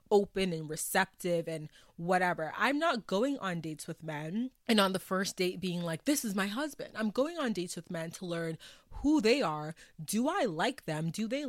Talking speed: 210 wpm